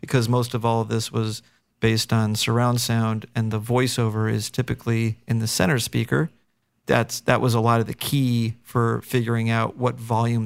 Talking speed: 190 wpm